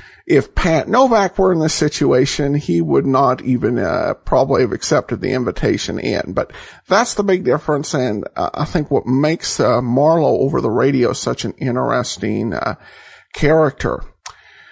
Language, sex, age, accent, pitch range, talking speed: English, male, 50-69, American, 145-200 Hz, 160 wpm